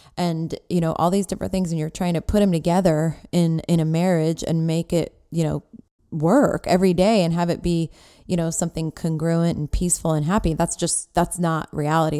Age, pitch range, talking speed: 20-39, 160-190 Hz, 210 wpm